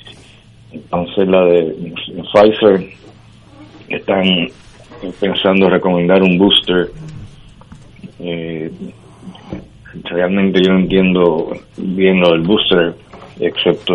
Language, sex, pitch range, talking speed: Spanish, male, 85-100 Hz, 90 wpm